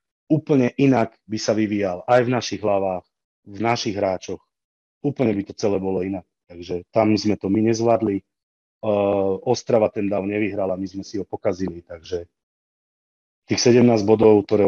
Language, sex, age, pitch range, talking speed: Slovak, male, 30-49, 95-110 Hz, 155 wpm